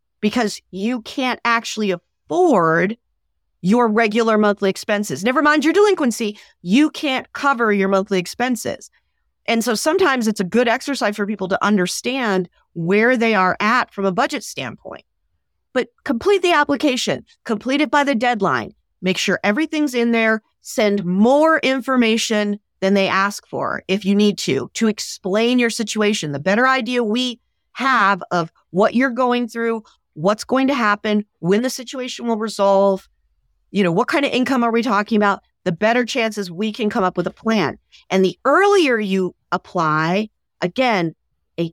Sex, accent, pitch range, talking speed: female, American, 195-255 Hz, 160 wpm